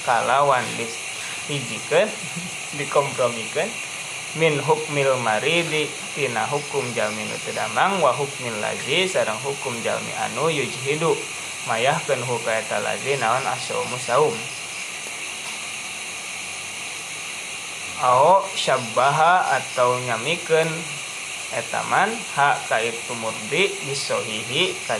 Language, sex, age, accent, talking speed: Indonesian, male, 20-39, native, 75 wpm